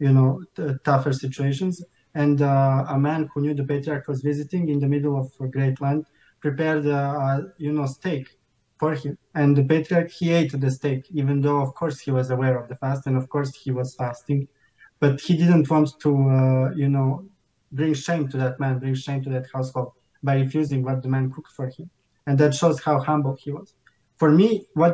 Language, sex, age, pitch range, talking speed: English, male, 20-39, 135-155 Hz, 215 wpm